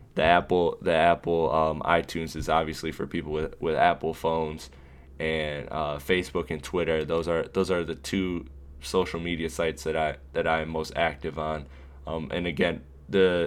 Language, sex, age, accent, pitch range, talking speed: English, male, 10-29, American, 80-90 Hz, 180 wpm